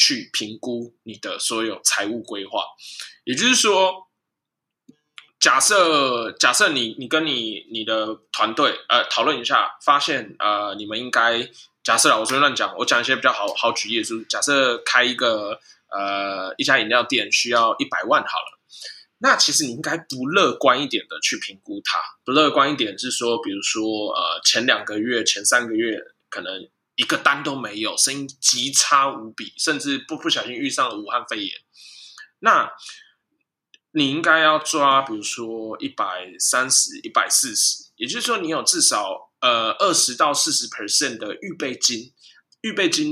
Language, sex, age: Chinese, male, 20-39